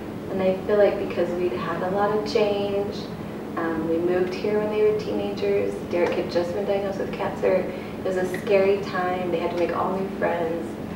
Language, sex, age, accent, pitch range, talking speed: English, female, 20-39, American, 175-215 Hz, 210 wpm